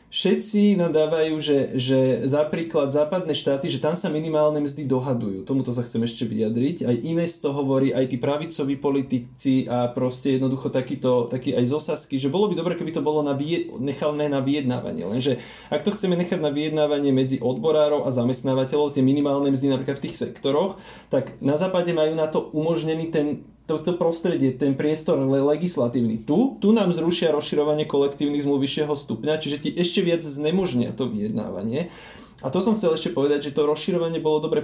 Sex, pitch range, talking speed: male, 135-160 Hz, 175 wpm